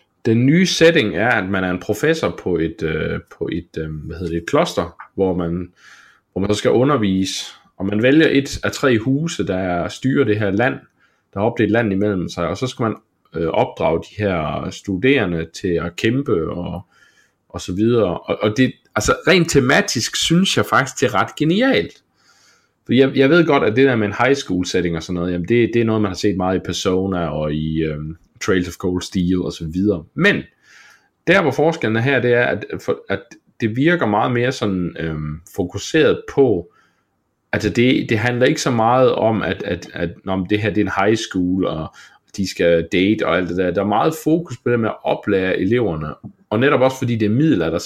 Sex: male